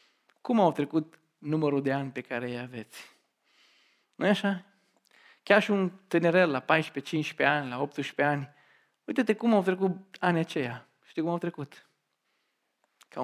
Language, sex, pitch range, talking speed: Romanian, male, 140-185 Hz, 155 wpm